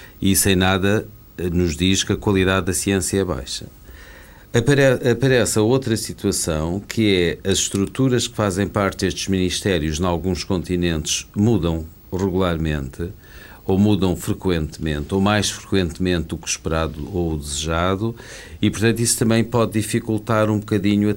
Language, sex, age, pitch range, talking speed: Portuguese, male, 50-69, 85-100 Hz, 140 wpm